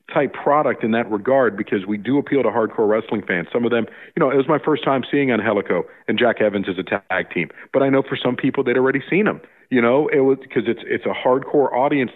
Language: English